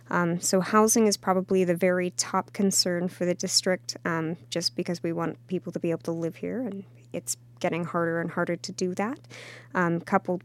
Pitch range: 165-190 Hz